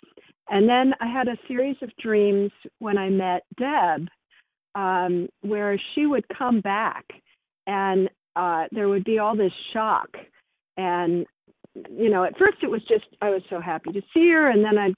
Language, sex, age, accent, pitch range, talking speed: English, female, 50-69, American, 195-265 Hz, 175 wpm